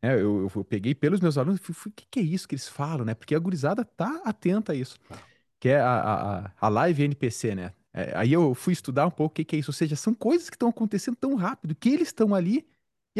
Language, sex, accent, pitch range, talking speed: Portuguese, male, Brazilian, 130-190 Hz, 265 wpm